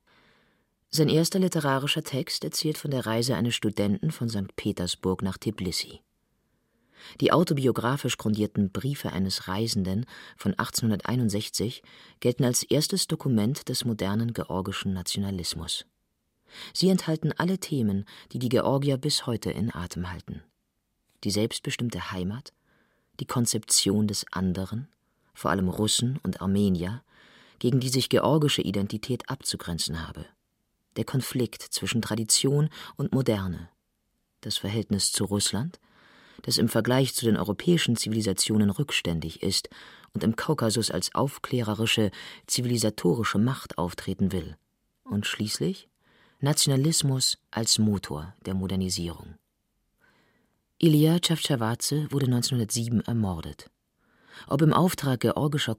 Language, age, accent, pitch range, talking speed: German, 40-59, German, 95-135 Hz, 115 wpm